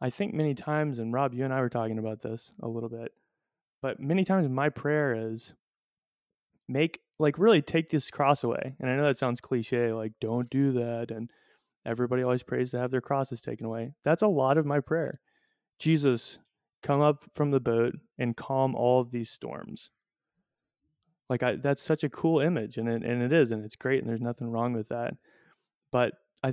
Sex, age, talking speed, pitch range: male, 20-39, 205 wpm, 115-140 Hz